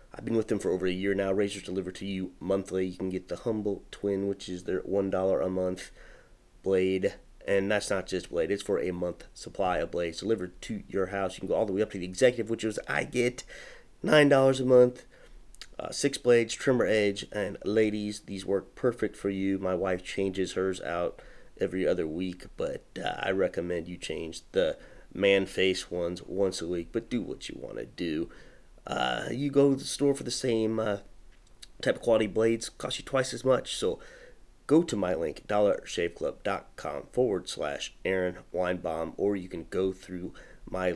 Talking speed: 195 wpm